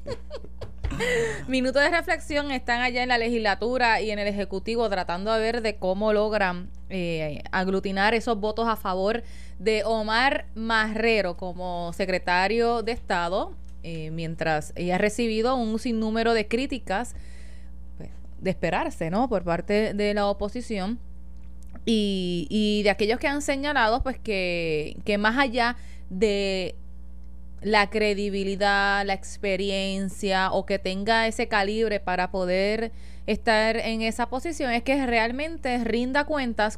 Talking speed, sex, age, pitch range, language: 135 wpm, female, 20-39, 190-235 Hz, Spanish